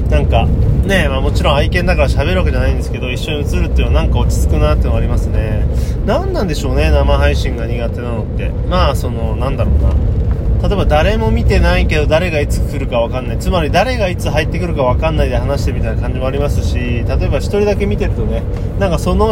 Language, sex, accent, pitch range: Japanese, male, native, 80-115 Hz